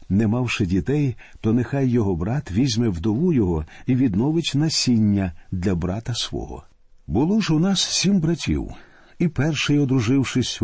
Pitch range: 95-135 Hz